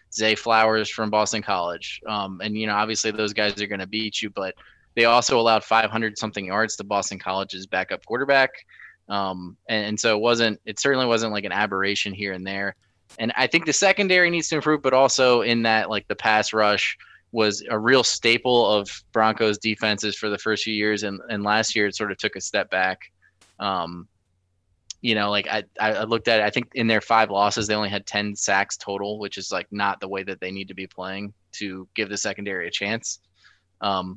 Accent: American